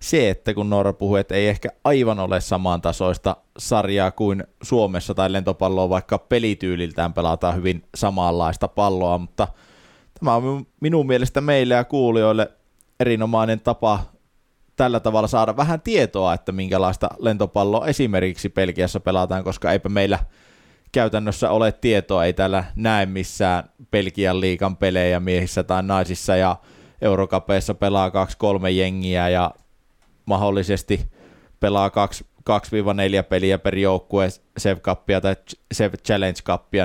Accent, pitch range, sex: native, 95-110 Hz, male